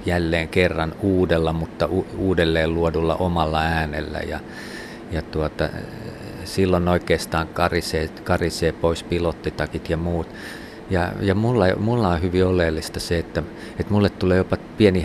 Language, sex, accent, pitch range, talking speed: Finnish, male, native, 80-95 Hz, 130 wpm